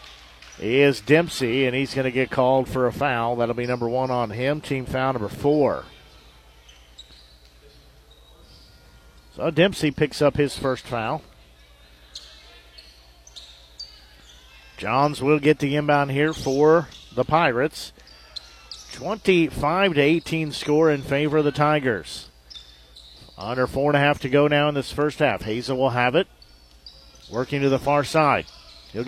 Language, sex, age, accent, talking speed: English, male, 50-69, American, 140 wpm